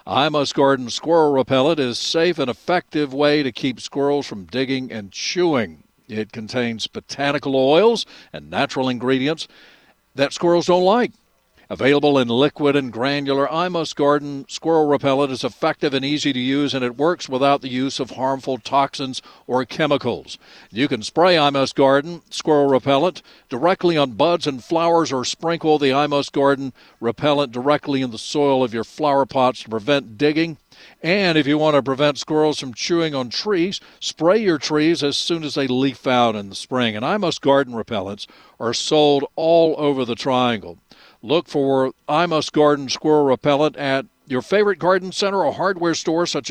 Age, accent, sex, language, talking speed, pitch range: 60-79, American, male, English, 170 wpm, 130-155 Hz